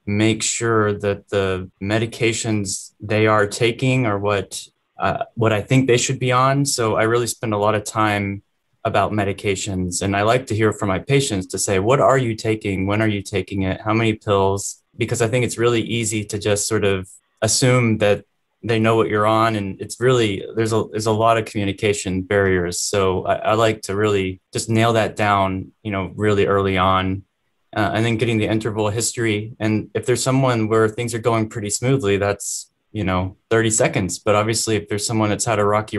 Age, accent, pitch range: 20-39, American, 95-110 Hz